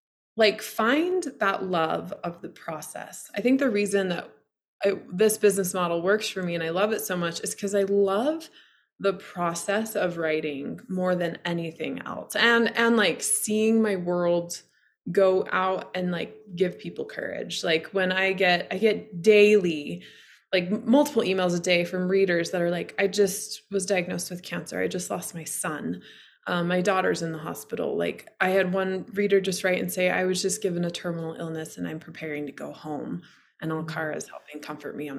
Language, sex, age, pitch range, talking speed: English, female, 20-39, 175-215 Hz, 195 wpm